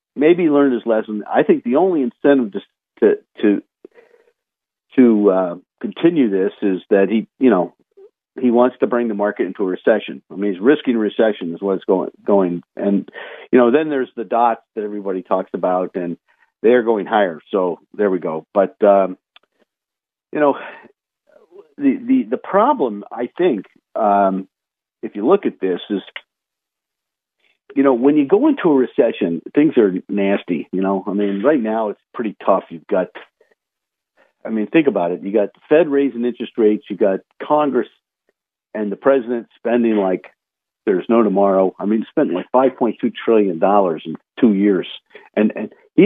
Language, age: English, 50-69